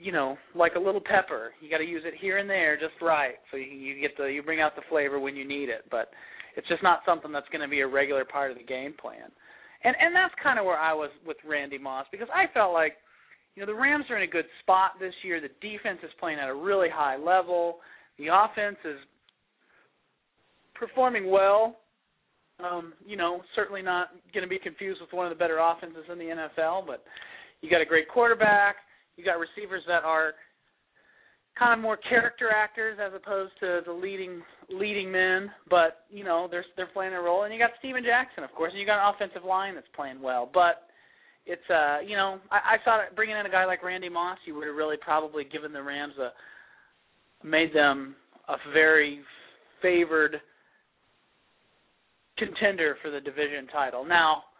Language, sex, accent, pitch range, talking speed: English, male, American, 150-200 Hz, 205 wpm